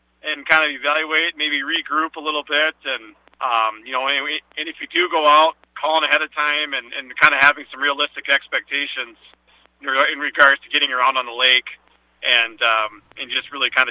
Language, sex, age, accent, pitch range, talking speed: English, male, 40-59, American, 125-155 Hz, 195 wpm